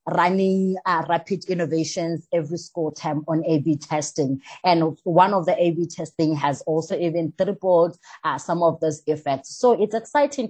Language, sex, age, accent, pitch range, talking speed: English, female, 20-39, South African, 160-195 Hz, 170 wpm